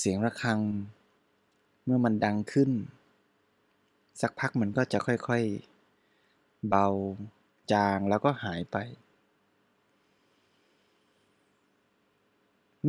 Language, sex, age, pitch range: Thai, male, 20-39, 105-125 Hz